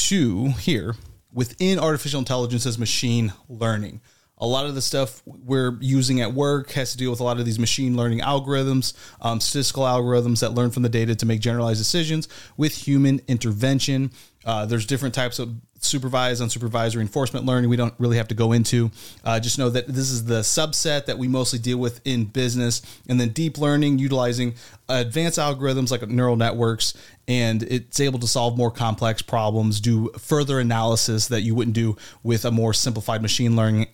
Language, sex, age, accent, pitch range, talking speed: English, male, 30-49, American, 115-135 Hz, 185 wpm